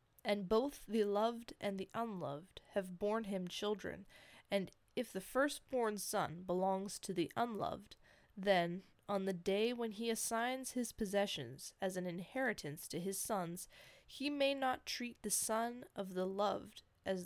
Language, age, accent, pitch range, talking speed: English, 20-39, American, 180-225 Hz, 155 wpm